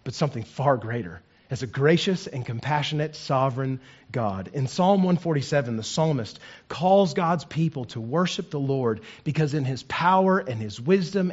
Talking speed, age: 160 wpm, 40-59